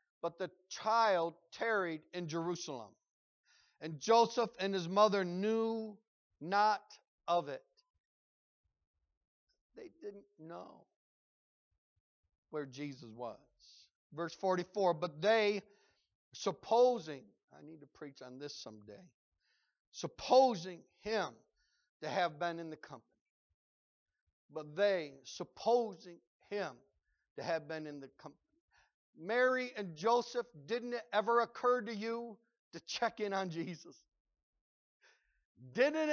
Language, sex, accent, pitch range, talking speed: English, male, American, 155-225 Hz, 110 wpm